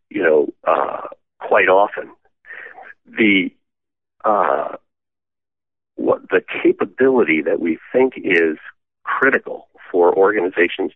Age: 50-69